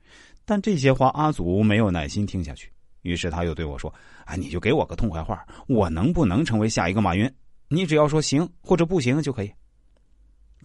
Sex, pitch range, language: male, 85-135 Hz, Chinese